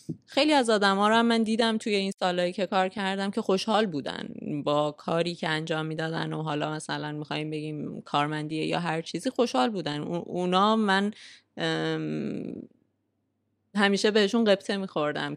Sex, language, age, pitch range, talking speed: female, Persian, 20-39, 155-185 Hz, 155 wpm